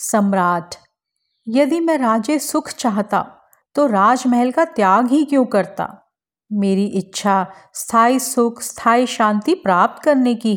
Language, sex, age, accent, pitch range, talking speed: Hindi, female, 40-59, native, 205-255 Hz, 125 wpm